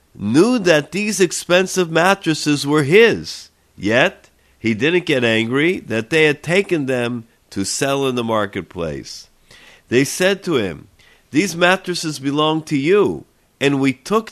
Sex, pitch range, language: male, 130-170 Hz, English